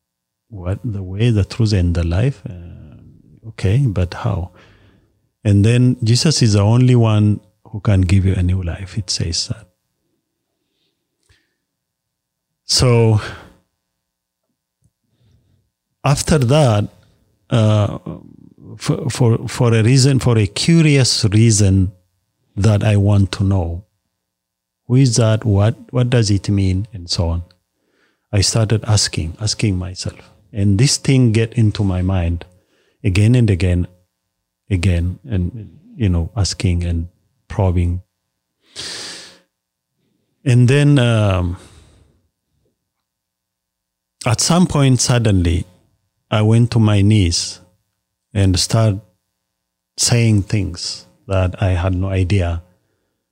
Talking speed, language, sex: 115 wpm, English, male